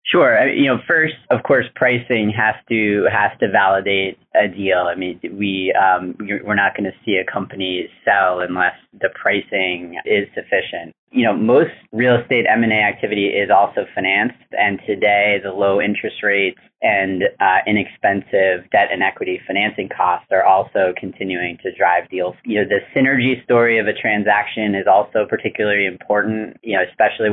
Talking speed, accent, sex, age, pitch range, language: 170 wpm, American, male, 30-49, 95-110 Hz, English